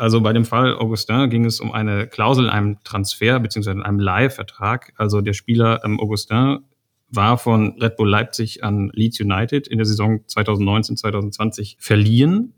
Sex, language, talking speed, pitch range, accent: male, German, 155 wpm, 105-125 Hz, German